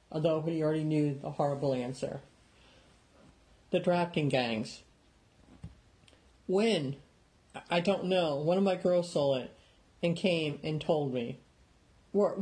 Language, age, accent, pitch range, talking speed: English, 50-69, American, 140-175 Hz, 125 wpm